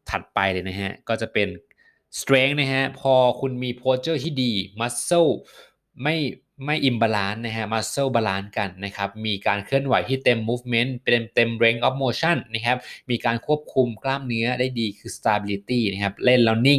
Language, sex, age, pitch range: Thai, male, 20-39, 110-130 Hz